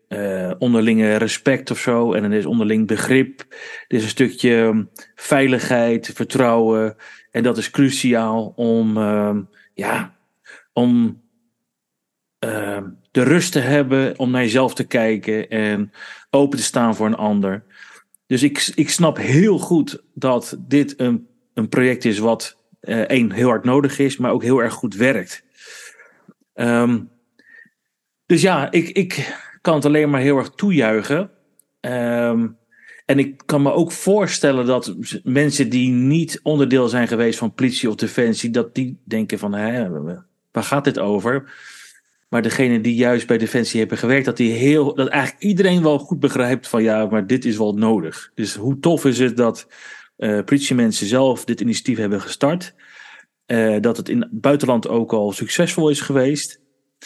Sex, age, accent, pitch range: male, 40-59, Dutch, 115-140 Hz